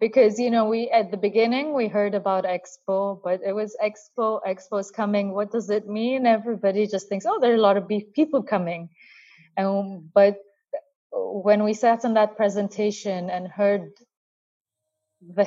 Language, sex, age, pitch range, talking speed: English, female, 20-39, 185-230 Hz, 165 wpm